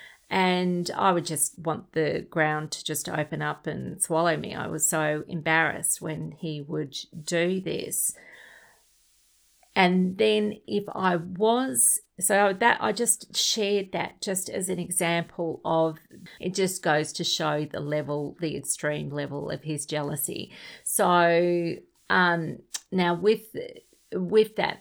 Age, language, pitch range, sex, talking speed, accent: 40-59, English, 165-195 Hz, female, 140 wpm, Australian